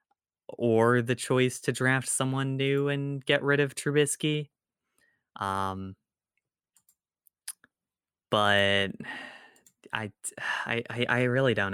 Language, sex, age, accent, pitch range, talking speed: English, male, 20-39, American, 100-120 Hz, 95 wpm